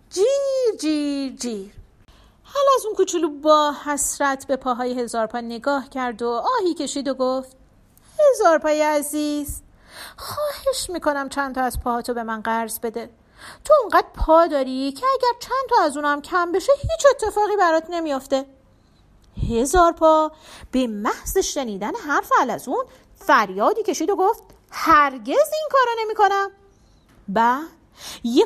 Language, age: Persian, 40-59